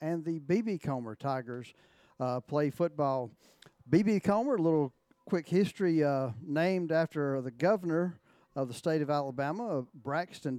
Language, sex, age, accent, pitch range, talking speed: English, male, 50-69, American, 135-170 Hz, 140 wpm